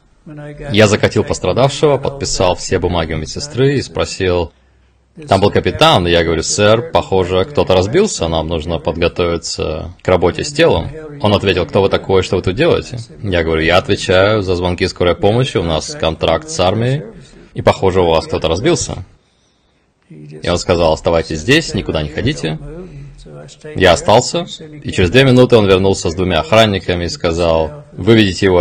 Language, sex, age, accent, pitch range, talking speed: Russian, male, 20-39, native, 85-135 Hz, 165 wpm